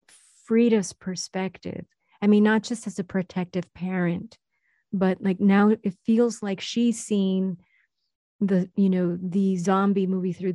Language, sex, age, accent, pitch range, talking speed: English, female, 40-59, American, 175-200 Hz, 140 wpm